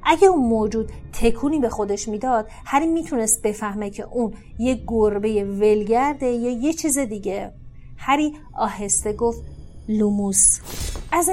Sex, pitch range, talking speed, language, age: female, 210-250 Hz, 135 wpm, Persian, 30-49